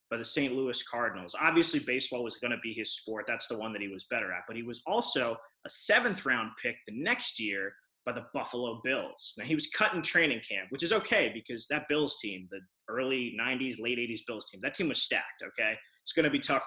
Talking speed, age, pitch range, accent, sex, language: 240 wpm, 20-39, 115-155 Hz, American, male, English